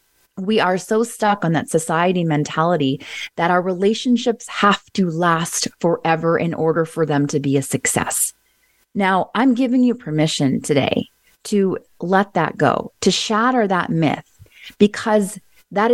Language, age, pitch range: English, 30-49, 170-230 Hz